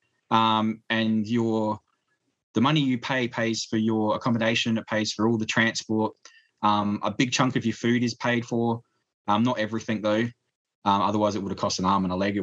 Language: English